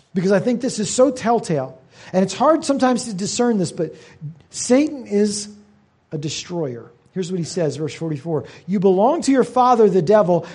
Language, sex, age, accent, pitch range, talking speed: English, male, 40-59, American, 155-235 Hz, 180 wpm